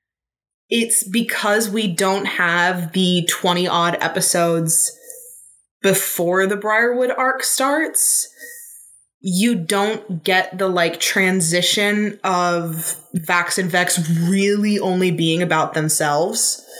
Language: English